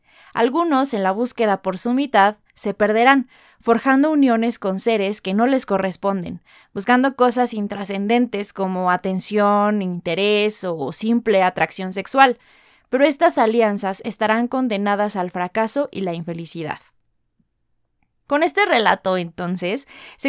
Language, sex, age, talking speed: Spanish, female, 20-39, 125 wpm